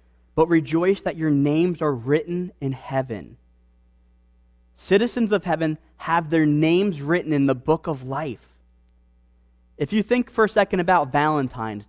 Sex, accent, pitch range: male, American, 125-170 Hz